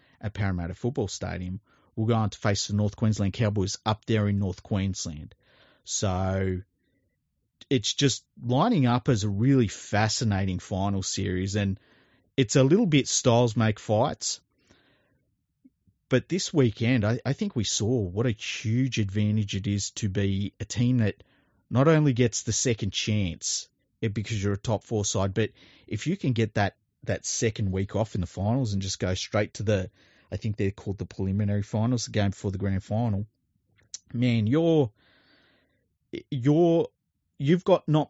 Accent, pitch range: Australian, 100-125 Hz